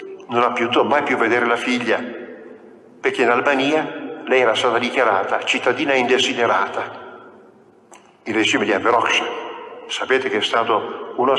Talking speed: 135 wpm